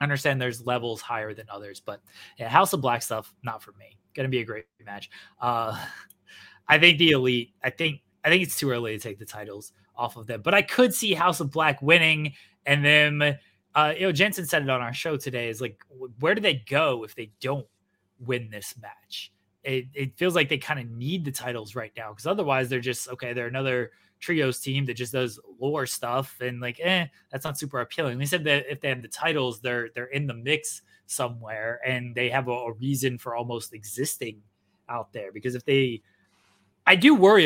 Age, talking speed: 20-39, 215 wpm